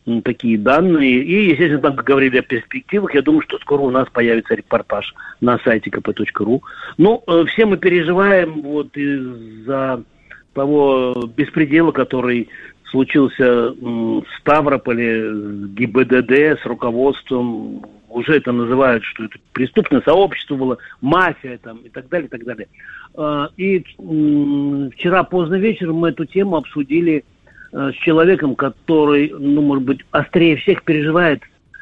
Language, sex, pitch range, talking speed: Russian, male, 125-160 Hz, 140 wpm